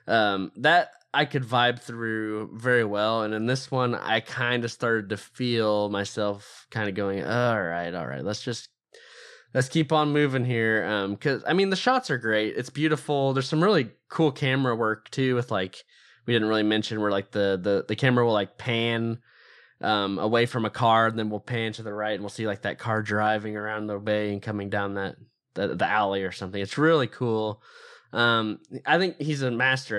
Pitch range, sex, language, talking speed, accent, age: 105-130 Hz, male, English, 210 wpm, American, 20-39